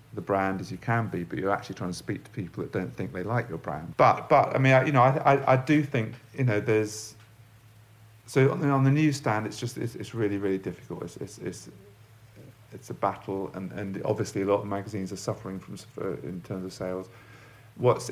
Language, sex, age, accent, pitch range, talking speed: English, male, 50-69, British, 90-115 Hz, 235 wpm